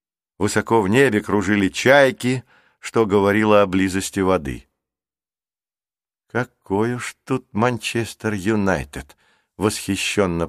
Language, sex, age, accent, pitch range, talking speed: Russian, male, 50-69, native, 95-125 Hz, 90 wpm